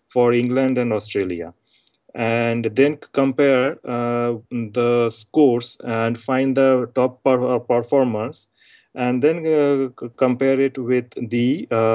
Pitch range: 120-140 Hz